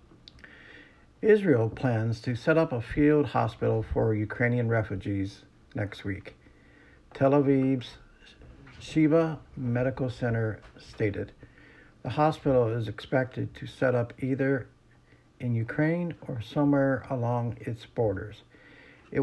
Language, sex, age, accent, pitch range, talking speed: English, male, 60-79, American, 110-140 Hz, 110 wpm